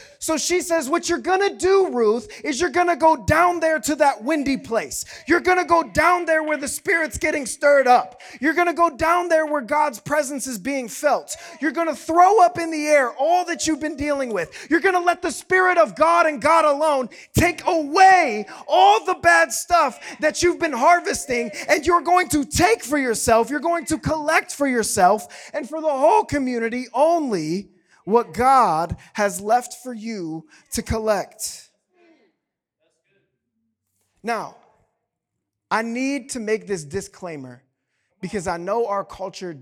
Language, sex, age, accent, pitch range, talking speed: English, male, 30-49, American, 210-330 Hz, 180 wpm